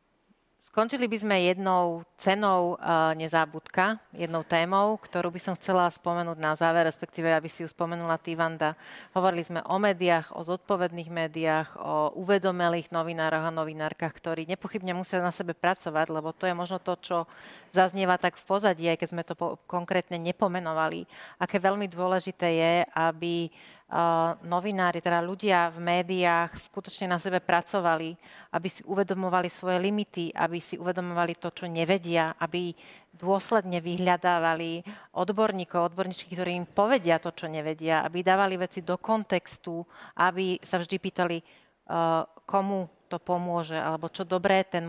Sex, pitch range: female, 165-185 Hz